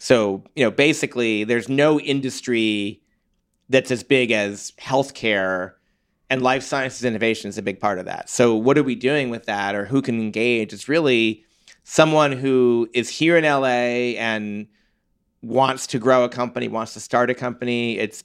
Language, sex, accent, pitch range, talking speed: English, male, American, 110-135 Hz, 175 wpm